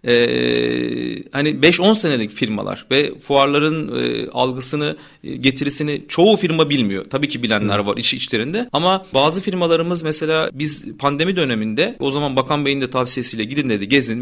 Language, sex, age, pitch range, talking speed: Turkish, male, 40-59, 130-185 Hz, 150 wpm